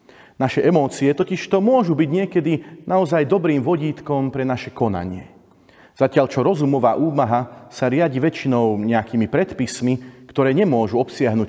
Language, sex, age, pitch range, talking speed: Slovak, male, 40-59, 115-155 Hz, 130 wpm